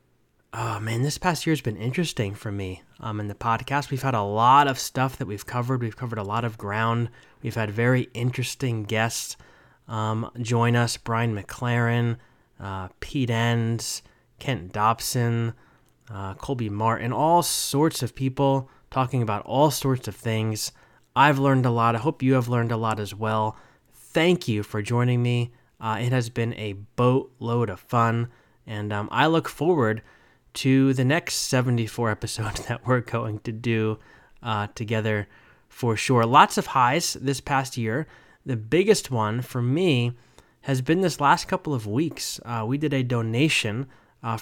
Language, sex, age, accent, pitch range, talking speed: English, male, 20-39, American, 115-135 Hz, 170 wpm